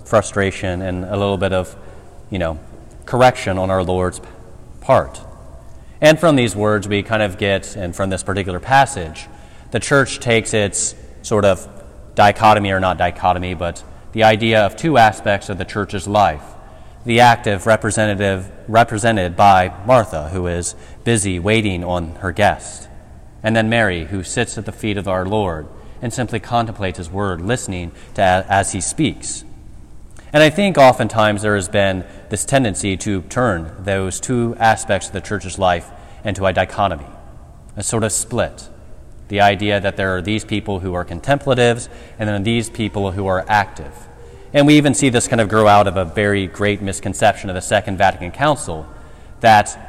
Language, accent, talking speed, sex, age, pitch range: English, American, 170 wpm, male, 30-49, 95-110 Hz